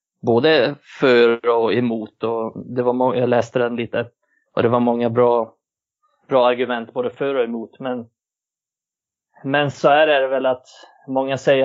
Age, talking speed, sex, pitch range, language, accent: 30-49, 165 wpm, male, 120-135 Hz, Swedish, native